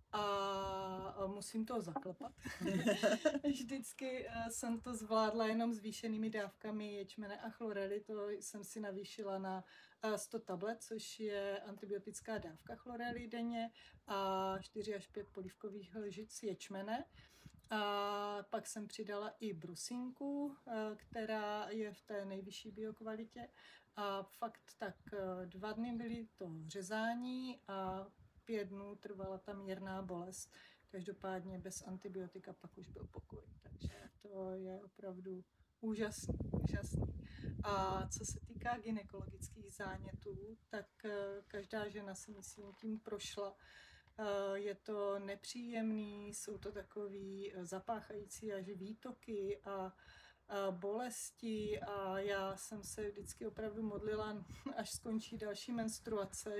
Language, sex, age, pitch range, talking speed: Slovak, female, 30-49, 195-220 Hz, 115 wpm